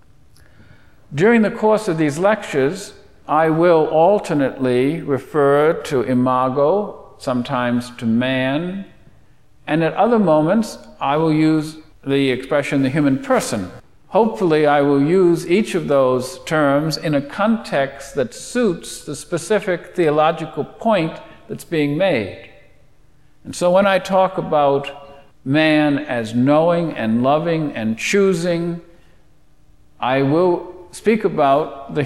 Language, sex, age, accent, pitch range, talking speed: English, male, 50-69, American, 135-175 Hz, 120 wpm